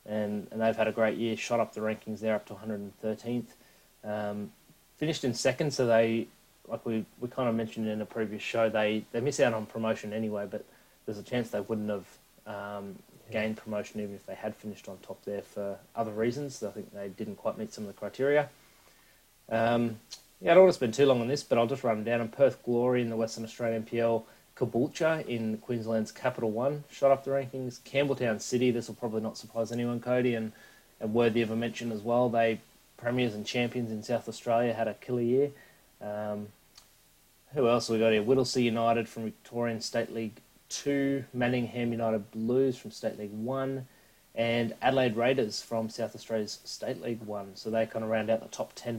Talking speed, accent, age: 210 wpm, Australian, 20-39